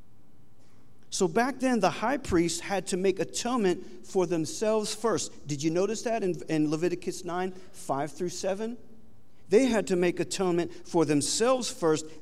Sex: male